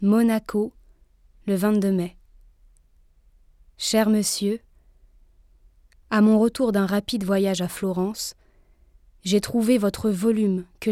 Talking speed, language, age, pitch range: 105 wpm, French, 20-39, 180-225 Hz